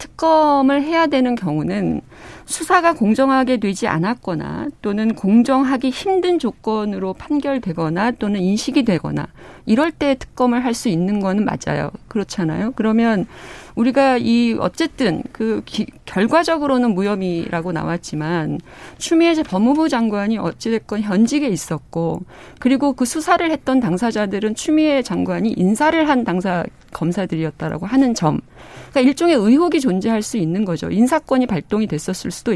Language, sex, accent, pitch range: Korean, female, native, 195-280 Hz